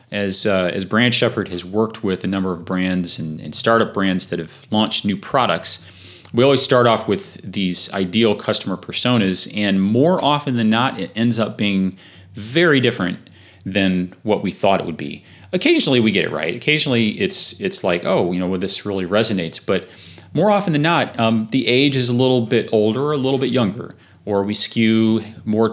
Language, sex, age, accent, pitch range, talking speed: English, male, 30-49, American, 95-120 Hz, 200 wpm